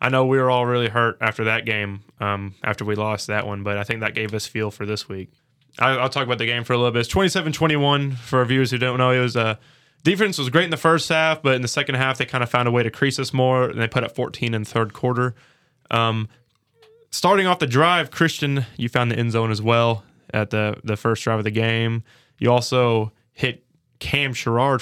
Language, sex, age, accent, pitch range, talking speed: English, male, 20-39, American, 115-135 Hz, 250 wpm